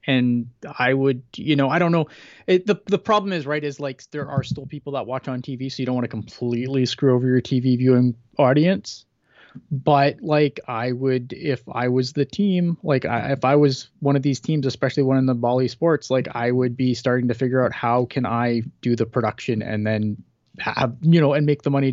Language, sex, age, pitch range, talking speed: English, male, 20-39, 115-140 Hz, 225 wpm